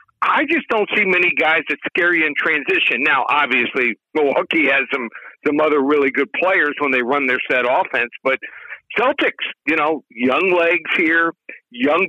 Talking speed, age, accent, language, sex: 175 wpm, 60-79, American, English, male